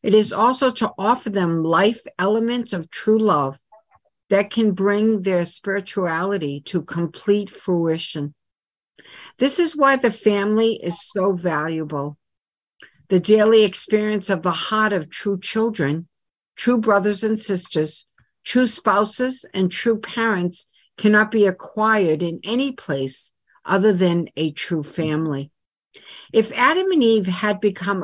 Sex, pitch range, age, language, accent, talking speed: female, 170-220 Hz, 60-79, English, American, 135 wpm